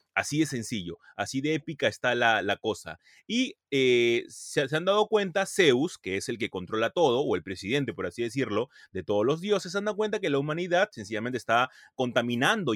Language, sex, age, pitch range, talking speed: Spanish, male, 30-49, 120-195 Hz, 205 wpm